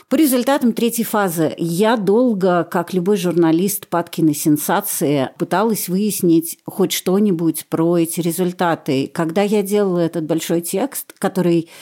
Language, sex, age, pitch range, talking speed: Russian, female, 40-59, 170-220 Hz, 125 wpm